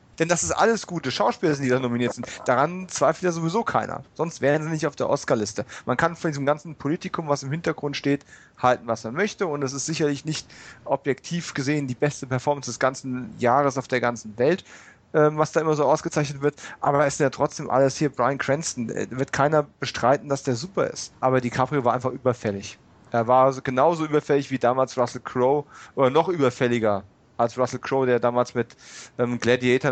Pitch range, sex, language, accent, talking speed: 125-160 Hz, male, German, German, 200 wpm